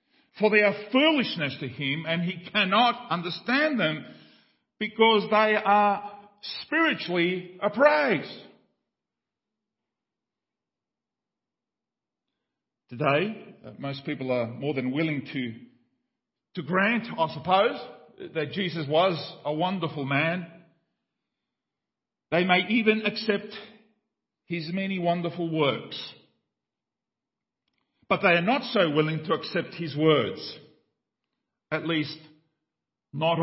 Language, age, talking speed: English, 50-69, 100 wpm